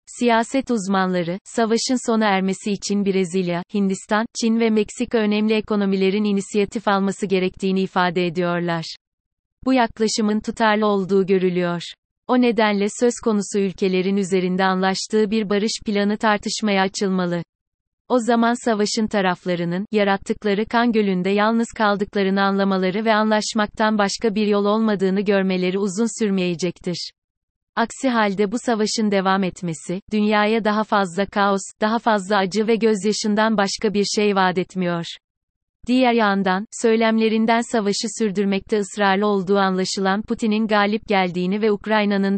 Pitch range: 190-220 Hz